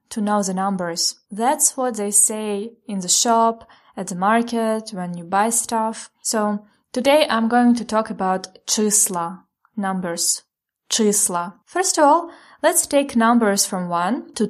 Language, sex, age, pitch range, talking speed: English, female, 20-39, 200-255 Hz, 155 wpm